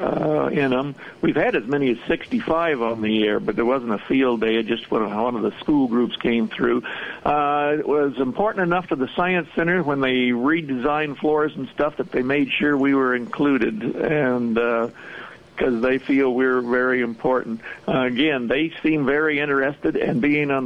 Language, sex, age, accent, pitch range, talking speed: English, male, 60-79, American, 120-145 Hz, 205 wpm